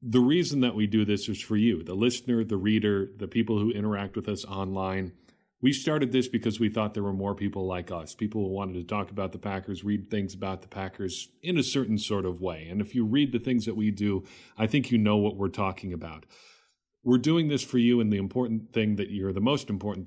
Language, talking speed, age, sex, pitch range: English, 245 wpm, 40-59, male, 95-115 Hz